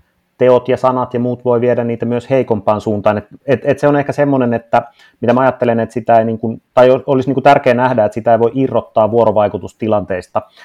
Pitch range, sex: 105-125 Hz, male